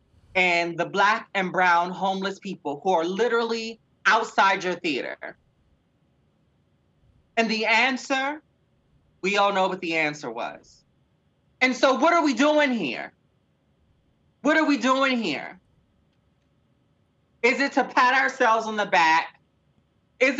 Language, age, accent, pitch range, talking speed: English, 30-49, American, 190-250 Hz, 130 wpm